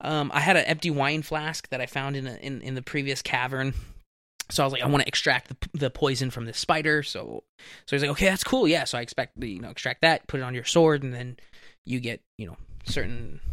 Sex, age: male, 20-39